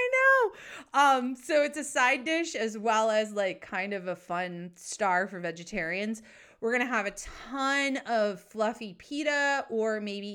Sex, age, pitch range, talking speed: female, 30-49, 195-260 Hz, 160 wpm